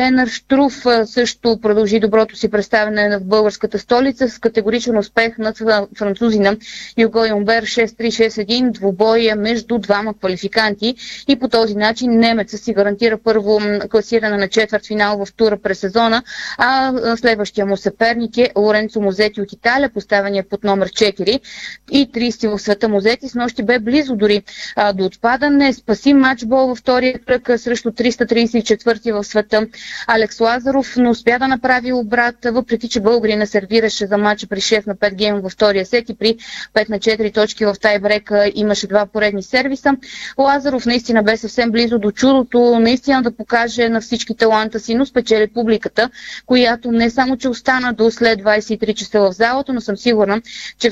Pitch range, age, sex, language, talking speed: 210-240 Hz, 20-39, female, Bulgarian, 165 wpm